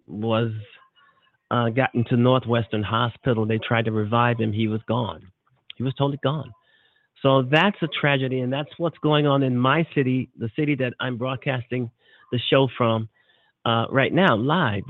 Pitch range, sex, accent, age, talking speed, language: 110-140 Hz, male, American, 40-59, 170 wpm, English